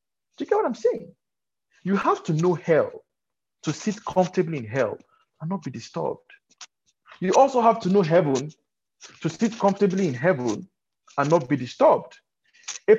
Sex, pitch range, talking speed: male, 130-200 Hz, 165 wpm